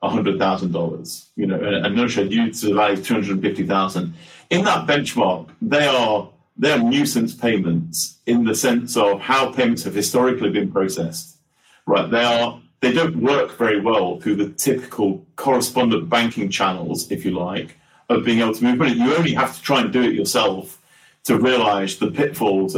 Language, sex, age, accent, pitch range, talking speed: English, male, 40-59, British, 100-130 Hz, 170 wpm